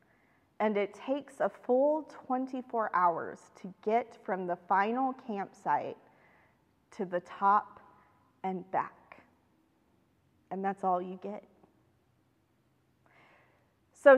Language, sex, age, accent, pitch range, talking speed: English, female, 30-49, American, 185-240 Hz, 100 wpm